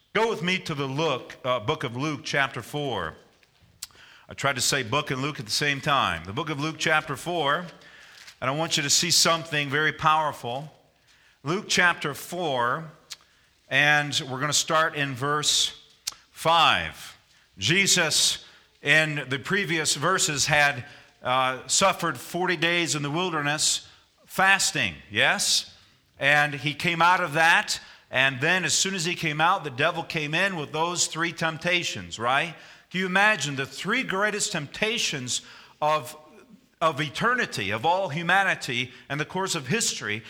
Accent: American